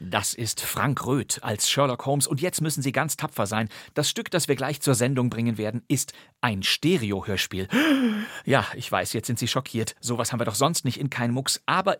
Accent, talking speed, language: German, 215 wpm, German